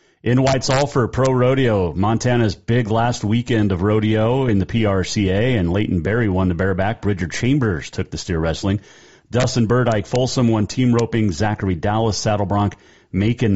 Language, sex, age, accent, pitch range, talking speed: English, male, 40-59, American, 90-115 Hz, 150 wpm